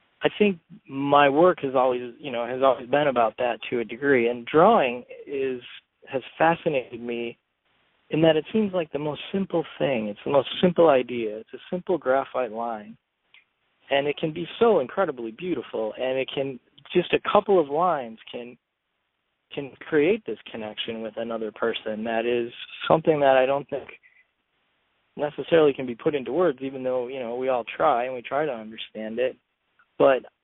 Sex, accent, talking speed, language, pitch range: male, American, 180 wpm, English, 120-170 Hz